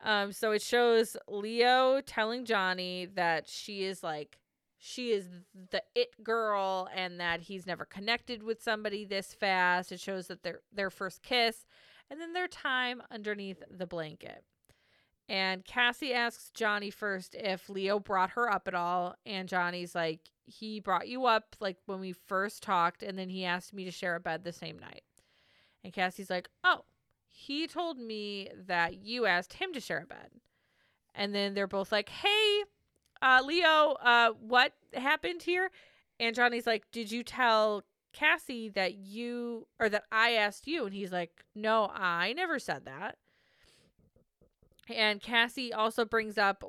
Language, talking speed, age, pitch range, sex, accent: English, 165 wpm, 30-49, 185-230 Hz, female, American